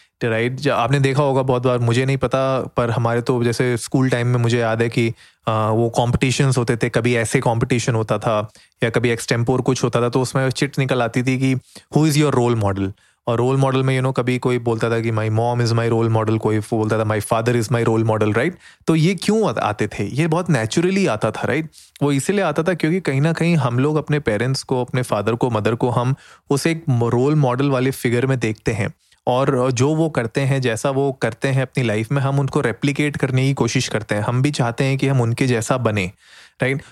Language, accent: Hindi, native